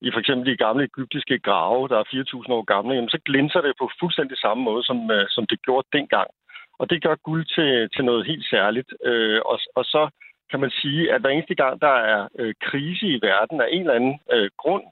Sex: male